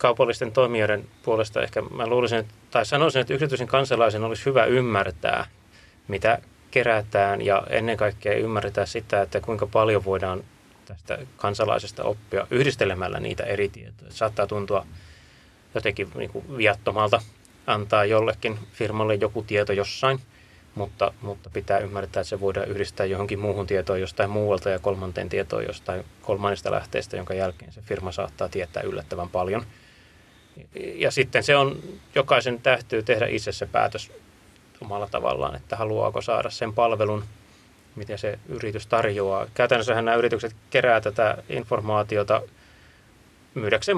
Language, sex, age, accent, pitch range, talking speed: Finnish, male, 20-39, native, 100-115 Hz, 135 wpm